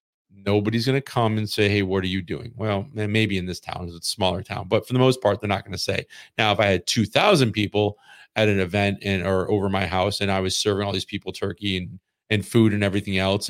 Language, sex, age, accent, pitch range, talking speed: English, male, 40-59, American, 95-110 Hz, 260 wpm